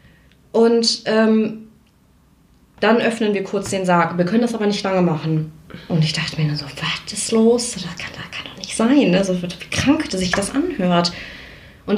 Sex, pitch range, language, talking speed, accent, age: female, 175-225 Hz, German, 195 wpm, German, 20-39